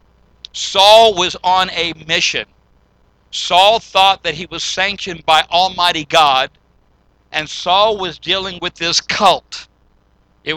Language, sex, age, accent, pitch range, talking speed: English, male, 60-79, American, 150-180 Hz, 125 wpm